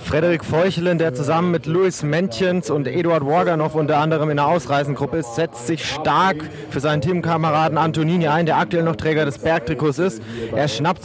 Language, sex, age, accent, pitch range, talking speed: German, male, 30-49, German, 140-175 Hz, 180 wpm